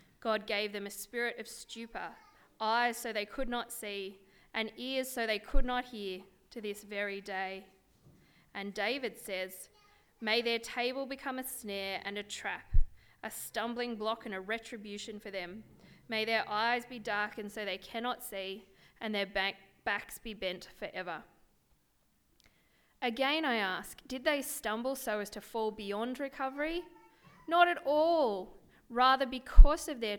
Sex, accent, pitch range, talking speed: female, Australian, 200-255 Hz, 155 wpm